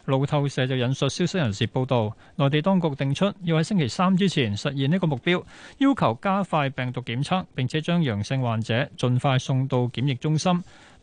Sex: male